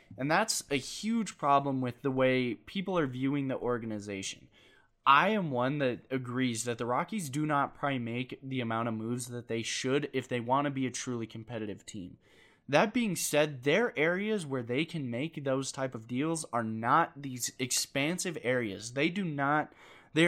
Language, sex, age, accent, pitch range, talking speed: English, male, 20-39, American, 120-160 Hz, 180 wpm